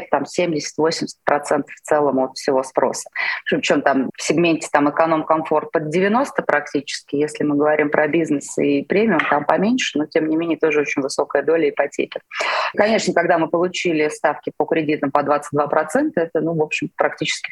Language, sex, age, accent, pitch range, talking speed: Russian, female, 20-39, native, 155-195 Hz, 170 wpm